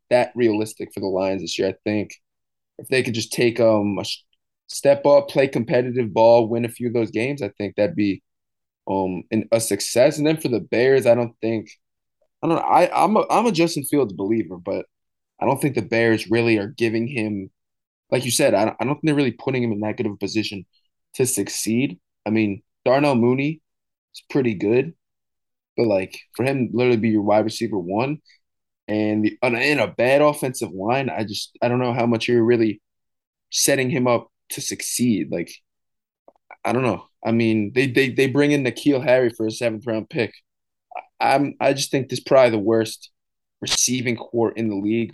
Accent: American